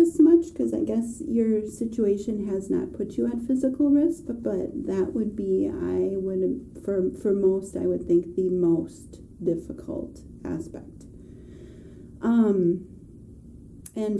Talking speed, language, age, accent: 135 wpm, English, 30-49, American